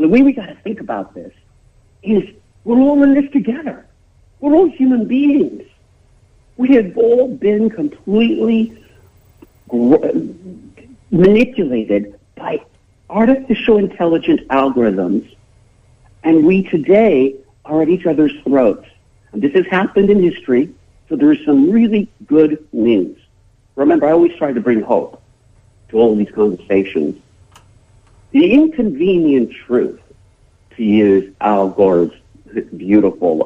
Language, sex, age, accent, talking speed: English, male, 60-79, American, 120 wpm